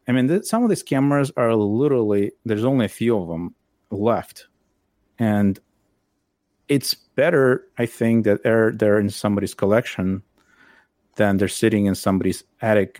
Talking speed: 150 wpm